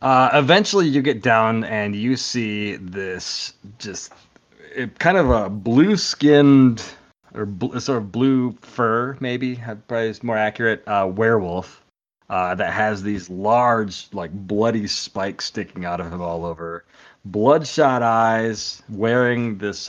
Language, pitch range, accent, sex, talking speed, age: English, 95-120 Hz, American, male, 135 wpm, 30-49